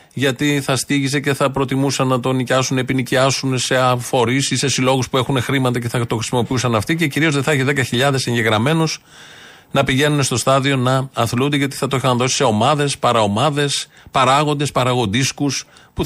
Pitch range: 115-145 Hz